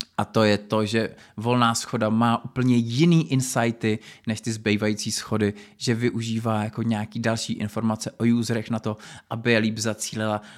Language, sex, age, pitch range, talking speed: Czech, male, 20-39, 105-120 Hz, 165 wpm